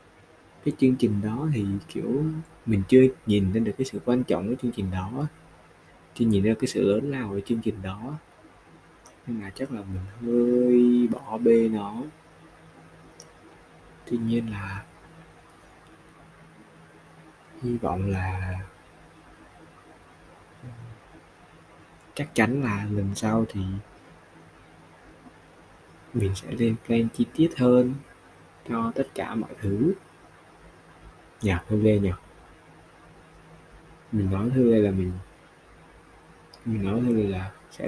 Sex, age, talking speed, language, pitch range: male, 20-39, 120 wpm, Vietnamese, 90-120 Hz